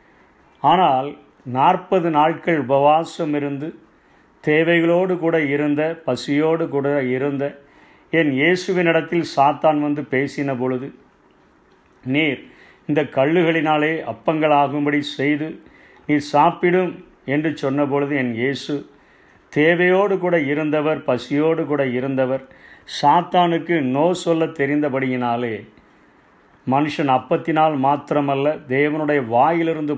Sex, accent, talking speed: male, native, 80 wpm